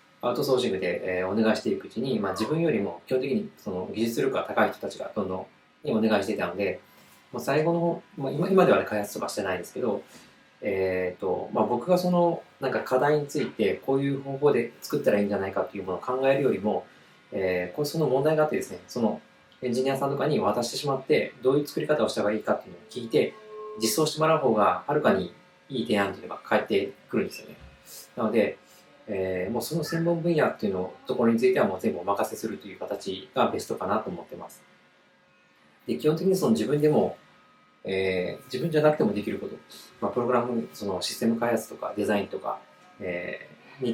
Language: Japanese